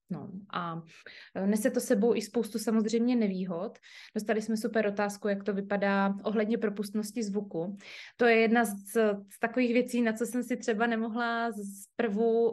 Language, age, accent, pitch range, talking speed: Czech, 20-39, native, 195-230 Hz, 155 wpm